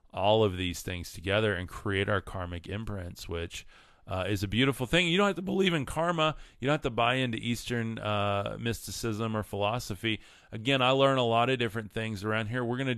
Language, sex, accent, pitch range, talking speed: English, male, American, 100-125 Hz, 215 wpm